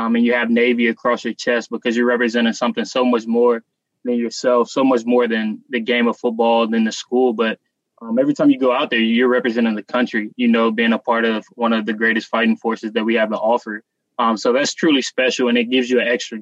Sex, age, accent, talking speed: male, 20-39, American, 250 wpm